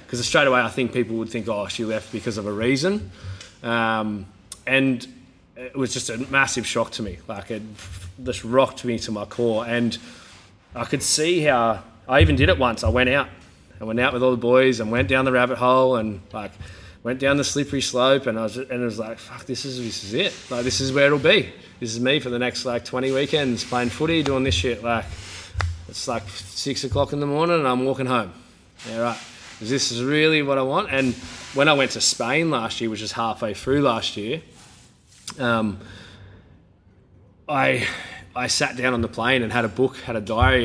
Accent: Australian